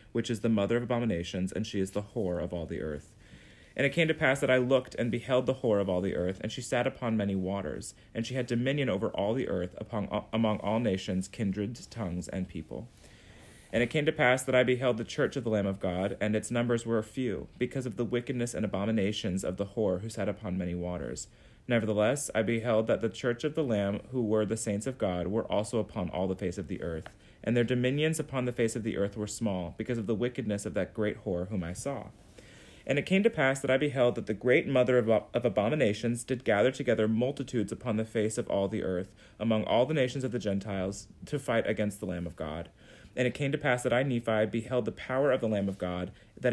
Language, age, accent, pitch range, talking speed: English, 30-49, American, 100-125 Hz, 240 wpm